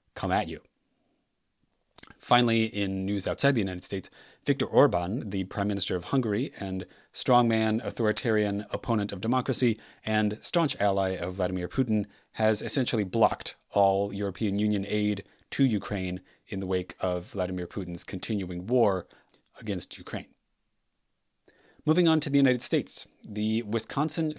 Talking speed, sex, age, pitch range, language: 140 wpm, male, 30-49, 100-125 Hz, English